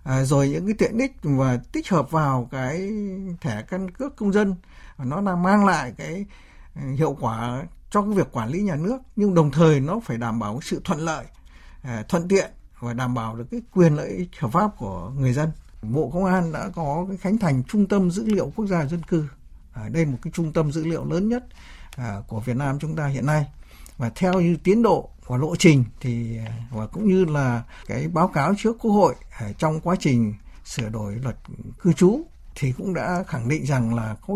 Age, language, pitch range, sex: 60-79, Vietnamese, 125-185 Hz, male